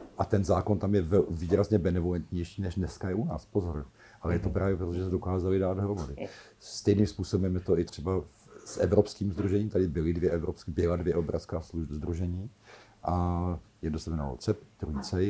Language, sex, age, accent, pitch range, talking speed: Czech, male, 50-69, native, 90-100 Hz, 180 wpm